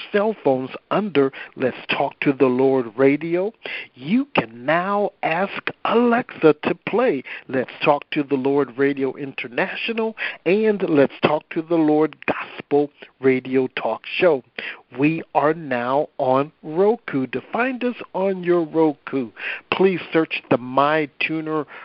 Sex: male